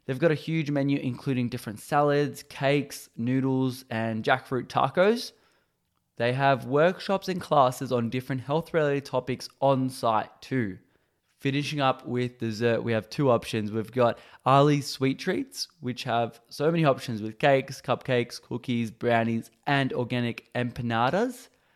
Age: 20-39